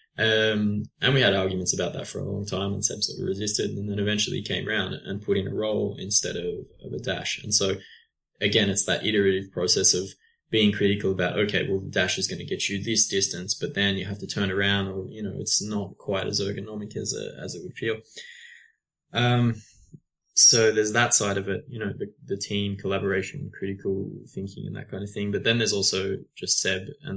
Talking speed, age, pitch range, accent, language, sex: 225 wpm, 20-39, 95-105 Hz, Australian, English, male